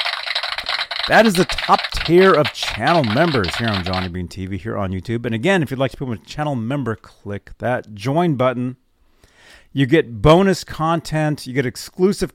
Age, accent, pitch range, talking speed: 40-59, American, 100-145 Hz, 180 wpm